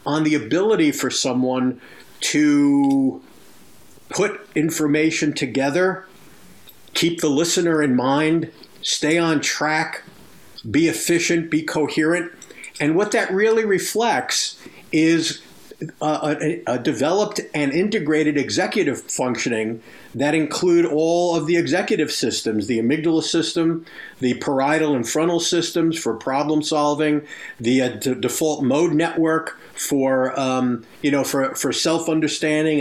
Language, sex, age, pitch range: English, male, 50-69, 145-175 Hz